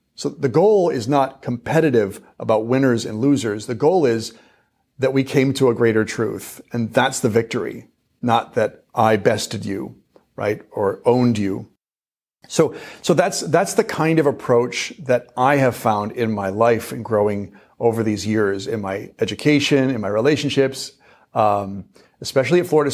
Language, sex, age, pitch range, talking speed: English, male, 40-59, 105-135 Hz, 165 wpm